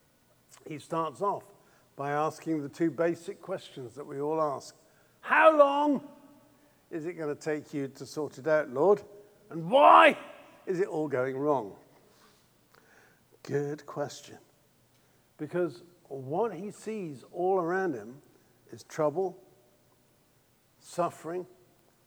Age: 50-69